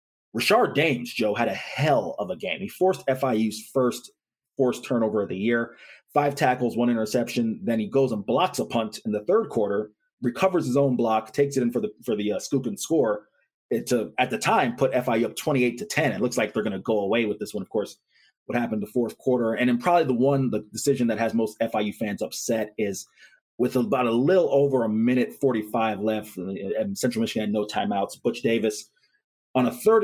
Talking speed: 220 wpm